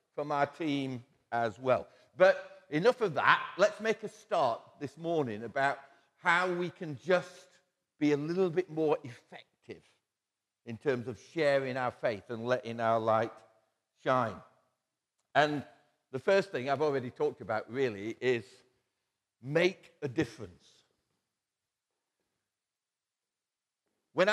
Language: English